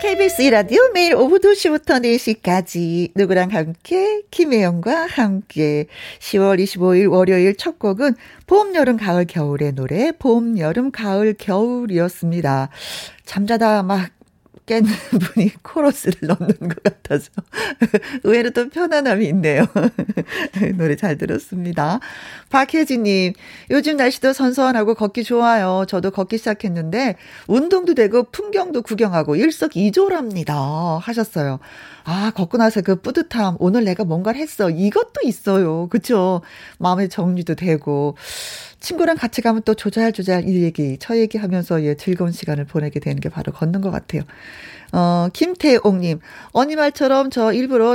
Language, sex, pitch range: Korean, female, 180-250 Hz